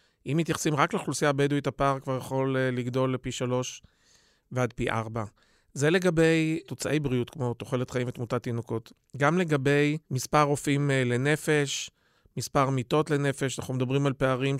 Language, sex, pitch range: Hebrew, male, 125-145 Hz